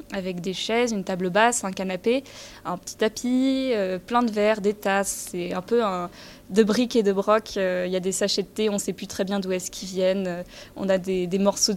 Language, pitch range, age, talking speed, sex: French, 185-220 Hz, 20-39, 240 wpm, female